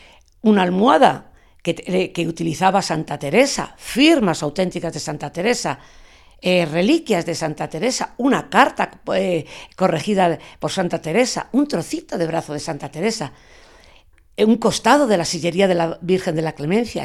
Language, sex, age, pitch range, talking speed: Spanish, female, 50-69, 165-210 Hz, 150 wpm